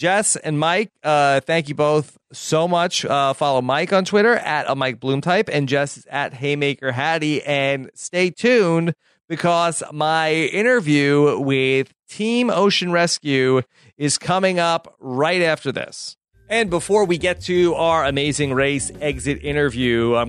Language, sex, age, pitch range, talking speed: English, male, 30-49, 135-175 Hz, 155 wpm